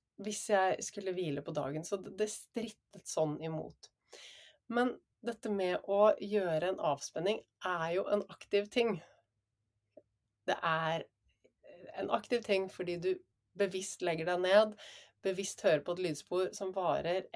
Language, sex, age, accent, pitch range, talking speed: English, female, 30-49, Swedish, 155-200 Hz, 150 wpm